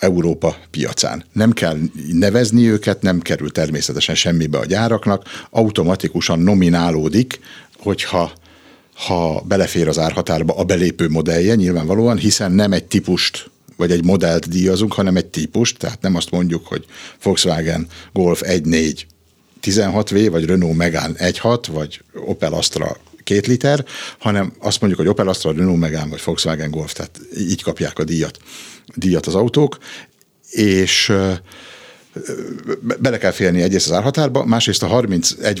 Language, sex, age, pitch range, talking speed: Hungarian, male, 60-79, 85-105 Hz, 140 wpm